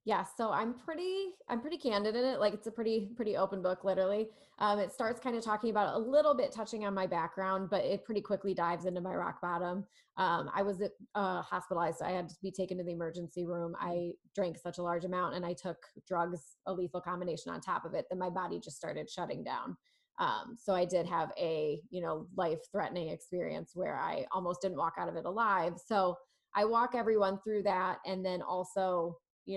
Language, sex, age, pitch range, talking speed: English, female, 20-39, 180-225 Hz, 220 wpm